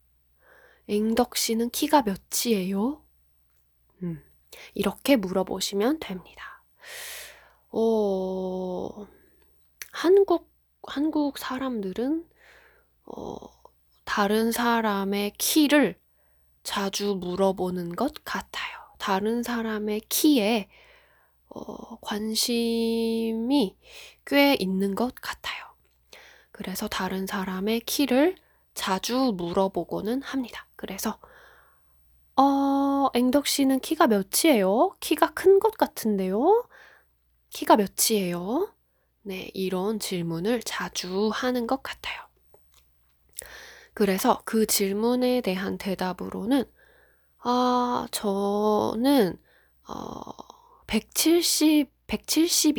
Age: 10-29